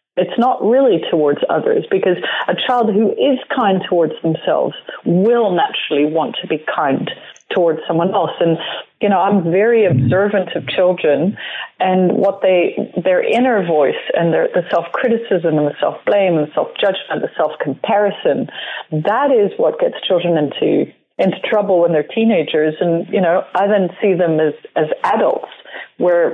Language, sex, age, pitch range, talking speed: English, female, 40-59, 170-225 Hz, 155 wpm